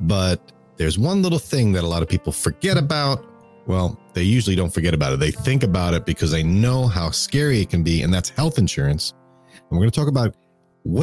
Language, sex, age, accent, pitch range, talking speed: English, male, 40-59, American, 85-125 Hz, 230 wpm